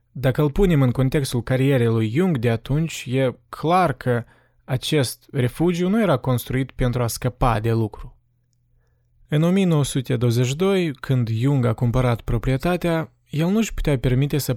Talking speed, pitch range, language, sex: 150 wpm, 120-150 Hz, Romanian, male